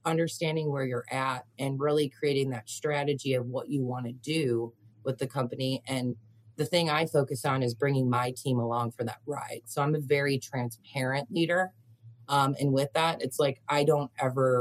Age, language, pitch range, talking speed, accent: 30-49, English, 120-150 Hz, 195 wpm, American